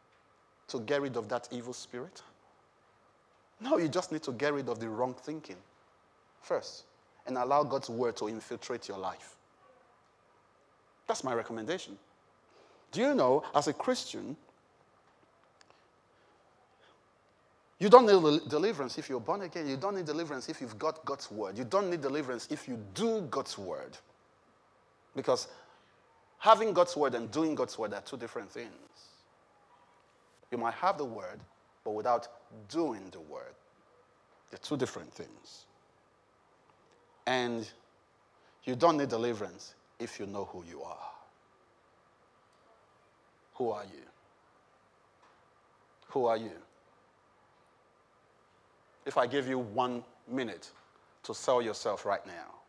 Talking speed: 130 wpm